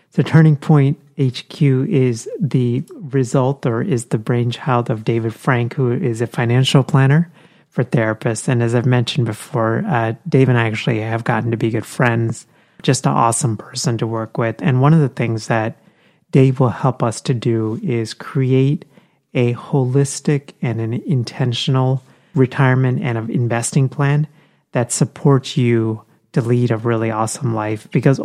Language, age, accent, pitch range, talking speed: English, 30-49, American, 115-145 Hz, 165 wpm